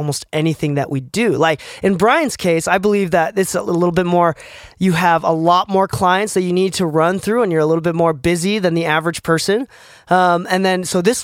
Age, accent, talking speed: 20-39, American, 240 wpm